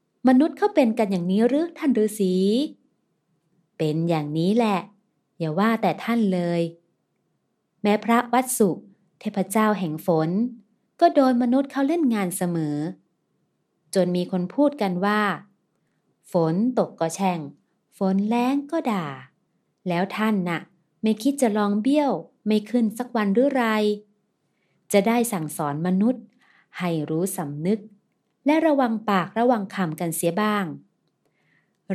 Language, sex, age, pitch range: Thai, female, 30-49, 175-230 Hz